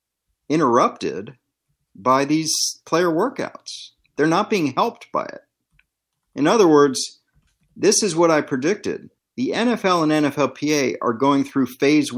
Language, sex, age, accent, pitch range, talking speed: English, male, 50-69, American, 115-150 Hz, 135 wpm